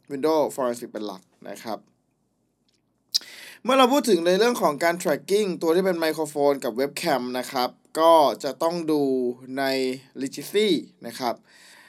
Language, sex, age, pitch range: Thai, male, 20-39, 130-170 Hz